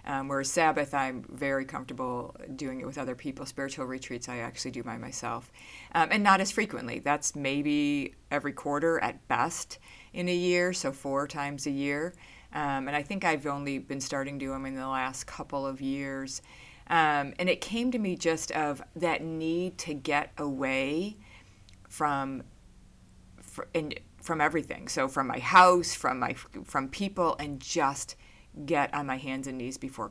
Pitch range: 135-170 Hz